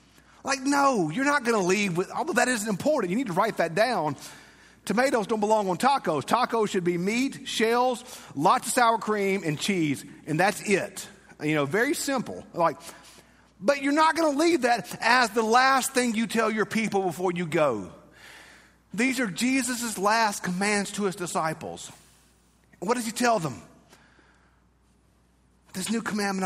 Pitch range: 205-275 Hz